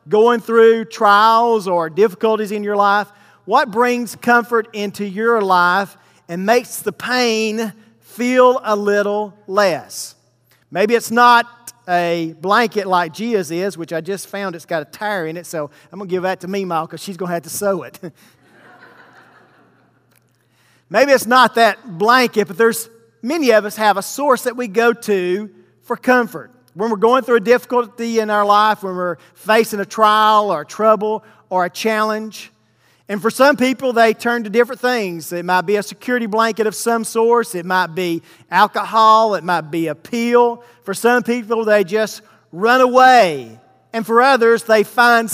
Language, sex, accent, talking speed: English, male, American, 175 wpm